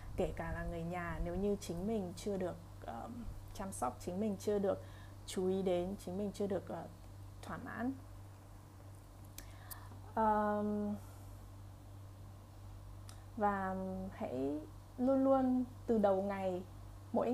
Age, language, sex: 20-39, Vietnamese, female